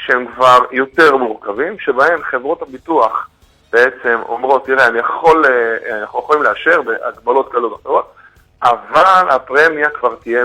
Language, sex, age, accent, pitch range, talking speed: Hebrew, male, 30-49, Serbian, 120-190 Hz, 120 wpm